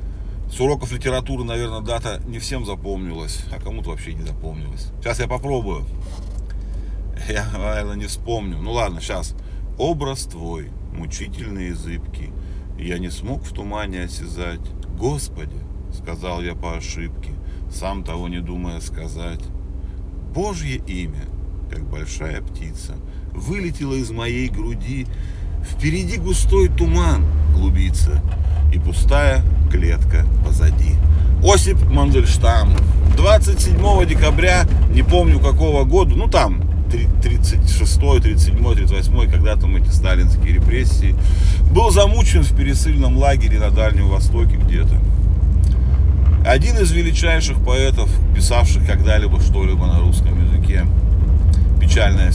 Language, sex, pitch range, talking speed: Russian, male, 75-90 Hz, 110 wpm